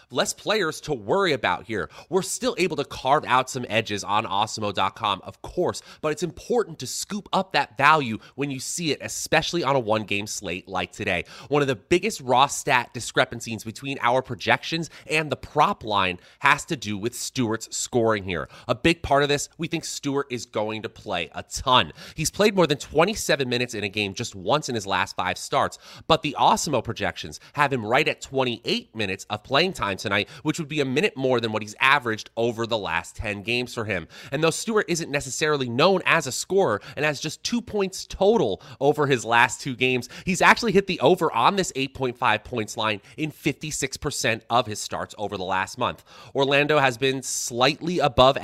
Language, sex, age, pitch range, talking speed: English, male, 30-49, 110-145 Hz, 200 wpm